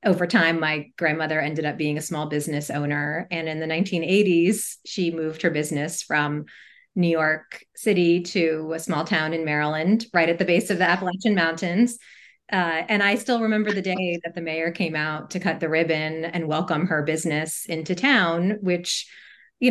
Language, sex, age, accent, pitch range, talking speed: English, female, 30-49, American, 160-190 Hz, 185 wpm